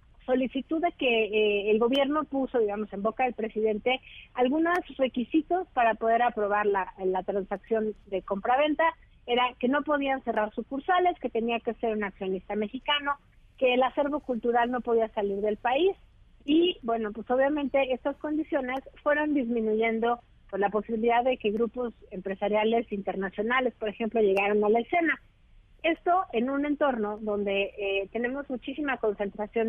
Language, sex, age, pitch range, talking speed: Spanish, female, 50-69, 210-265 Hz, 150 wpm